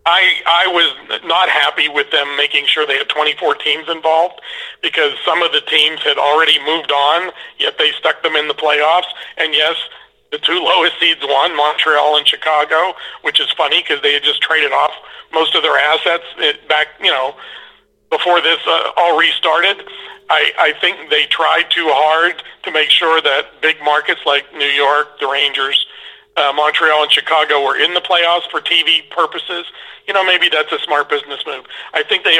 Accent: American